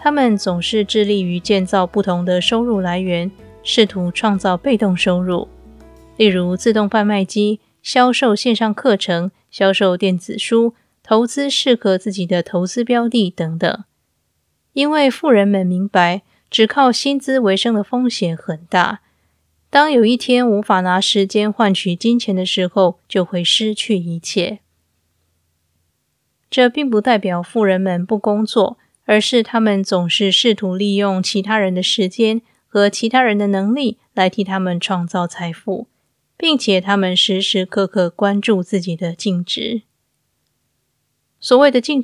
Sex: female